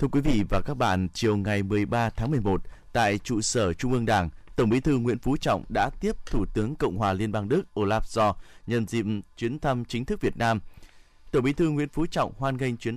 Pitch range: 105-140 Hz